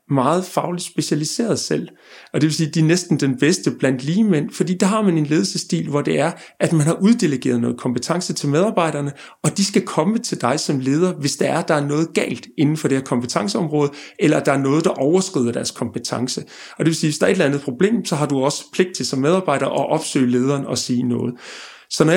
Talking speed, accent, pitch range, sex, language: 250 wpm, native, 140-180 Hz, male, Danish